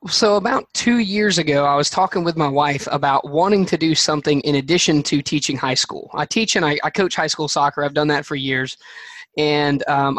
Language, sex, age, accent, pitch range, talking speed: English, male, 20-39, American, 145-165 Hz, 225 wpm